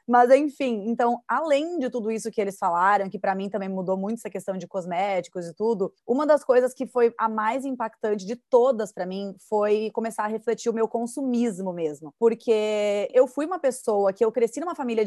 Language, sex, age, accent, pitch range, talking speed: Portuguese, female, 20-39, Brazilian, 200-260 Hz, 205 wpm